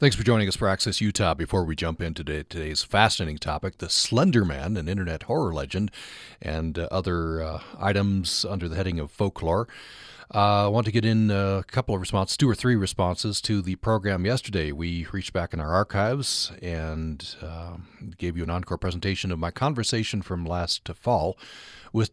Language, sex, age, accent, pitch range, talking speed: English, male, 40-59, American, 85-110 Hz, 185 wpm